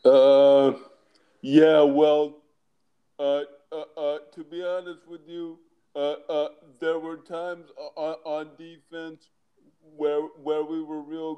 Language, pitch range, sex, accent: English, 140-160 Hz, male, American